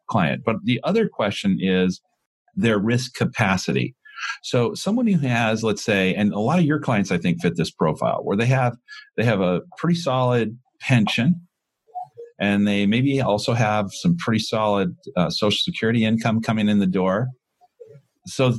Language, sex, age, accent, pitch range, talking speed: English, male, 50-69, American, 100-170 Hz, 170 wpm